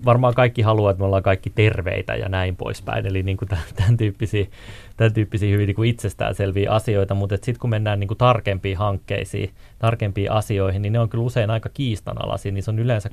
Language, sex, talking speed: Finnish, male, 185 wpm